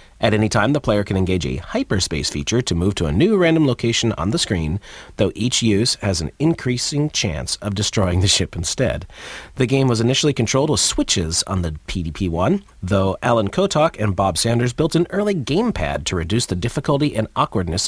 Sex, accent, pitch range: male, American, 90-135 Hz